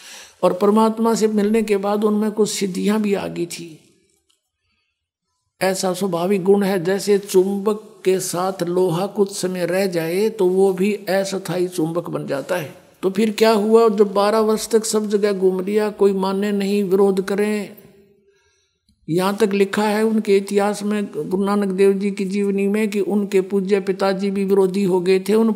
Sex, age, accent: male, 60-79, native